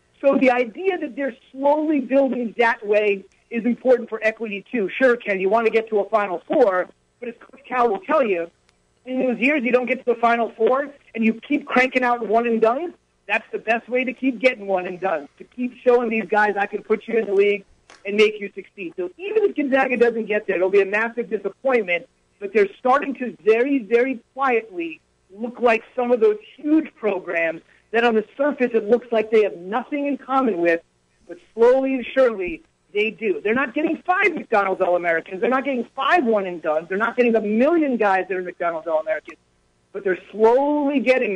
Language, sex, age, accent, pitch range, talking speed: English, male, 50-69, American, 205-265 Hz, 205 wpm